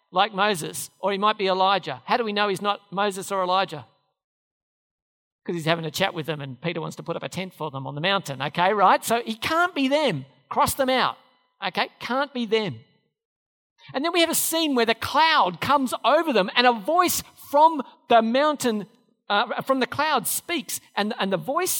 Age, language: 50-69, English